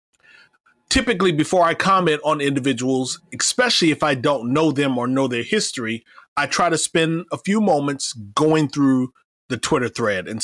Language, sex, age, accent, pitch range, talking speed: English, male, 30-49, American, 130-155 Hz, 165 wpm